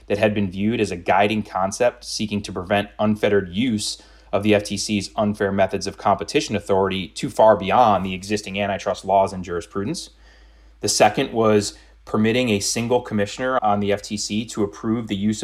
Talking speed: 170 wpm